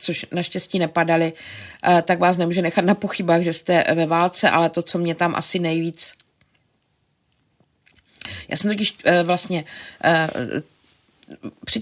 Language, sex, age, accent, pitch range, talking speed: Czech, female, 20-39, native, 165-180 Hz, 125 wpm